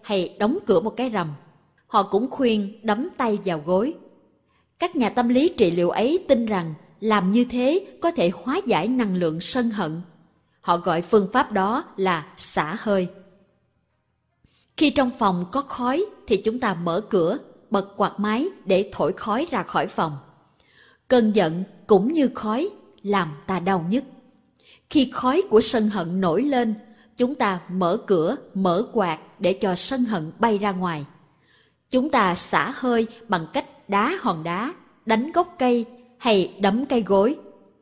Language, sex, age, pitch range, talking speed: Vietnamese, female, 20-39, 180-245 Hz, 165 wpm